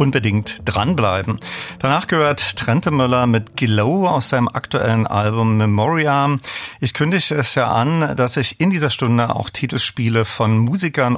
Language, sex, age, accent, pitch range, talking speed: German, male, 40-59, German, 110-140 Hz, 145 wpm